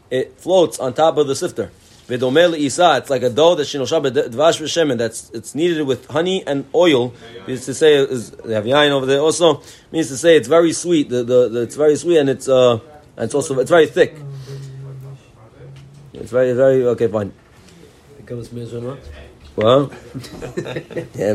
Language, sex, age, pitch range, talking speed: English, male, 30-49, 125-160 Hz, 155 wpm